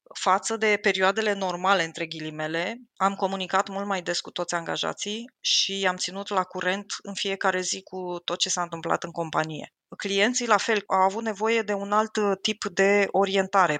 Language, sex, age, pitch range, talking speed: Romanian, female, 20-39, 185-210 Hz, 180 wpm